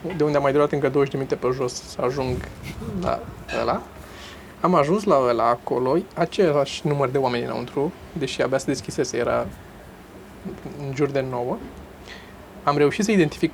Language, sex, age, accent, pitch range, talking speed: Romanian, male, 20-39, native, 140-170 Hz, 170 wpm